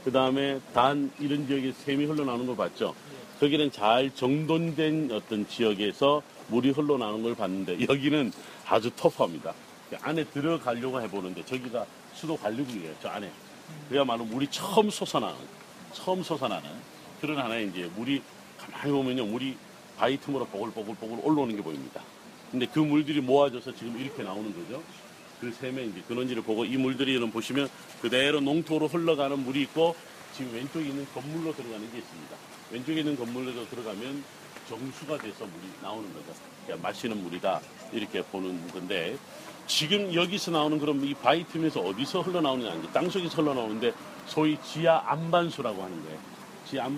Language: Korean